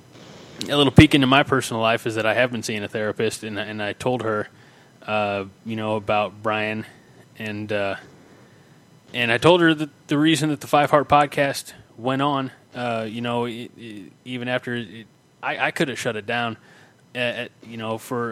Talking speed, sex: 200 wpm, male